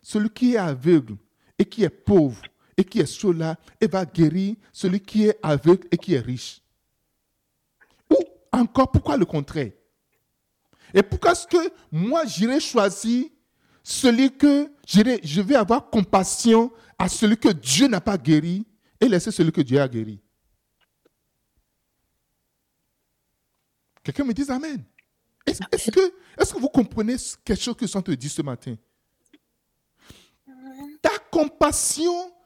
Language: French